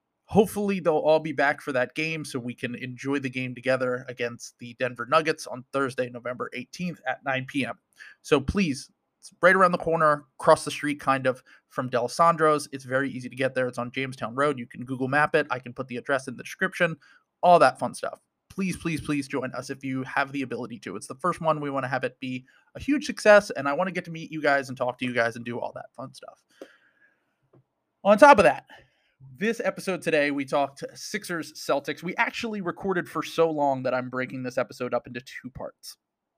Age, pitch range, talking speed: 30-49, 125-160 Hz, 230 wpm